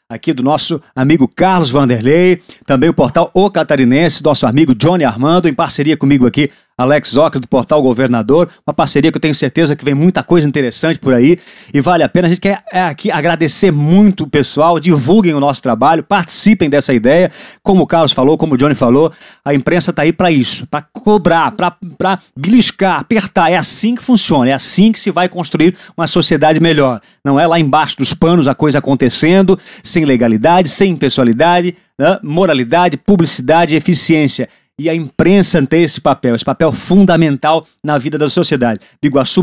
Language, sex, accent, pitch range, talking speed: Portuguese, male, Brazilian, 145-180 Hz, 185 wpm